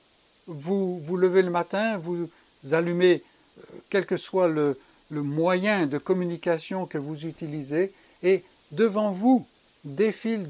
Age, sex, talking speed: 60-79, male, 125 wpm